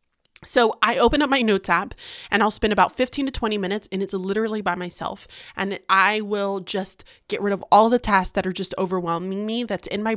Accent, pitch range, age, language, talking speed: American, 180-220 Hz, 20-39, English, 225 wpm